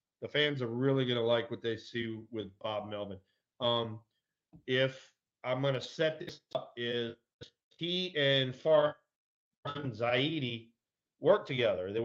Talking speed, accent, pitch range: 145 wpm, American, 115-140 Hz